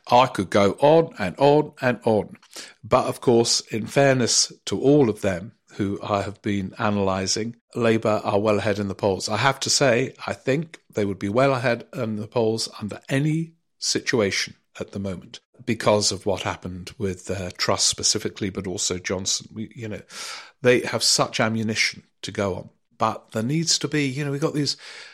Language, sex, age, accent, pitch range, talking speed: English, male, 50-69, British, 100-125 Hz, 190 wpm